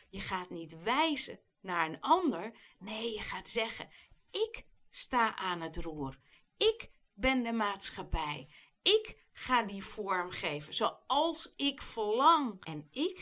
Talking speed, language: 135 wpm, Dutch